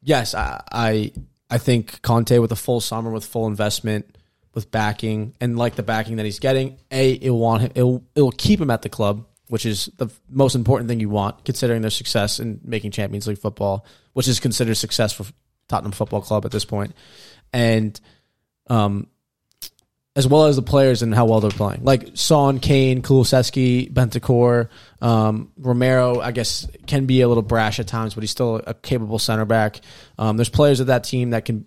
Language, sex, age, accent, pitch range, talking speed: English, male, 20-39, American, 110-125 Hz, 190 wpm